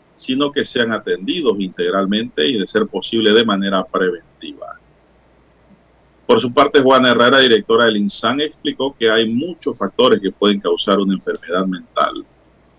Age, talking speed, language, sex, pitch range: 50-69, 145 wpm, Spanish, male, 100-145 Hz